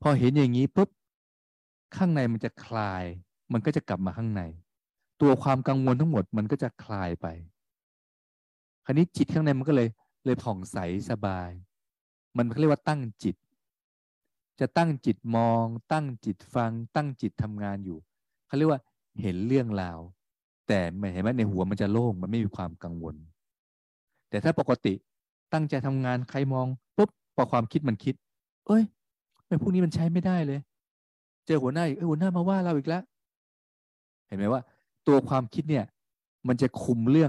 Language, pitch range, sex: Thai, 100-145 Hz, male